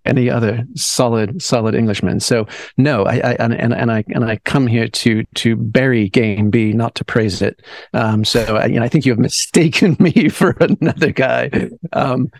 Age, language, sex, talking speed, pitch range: 40-59, English, male, 200 wpm, 110-125 Hz